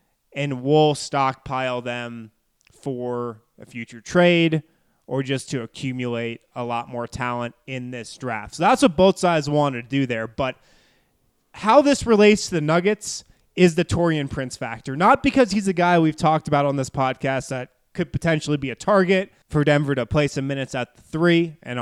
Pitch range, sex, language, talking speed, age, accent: 125-165 Hz, male, English, 185 wpm, 20-39, American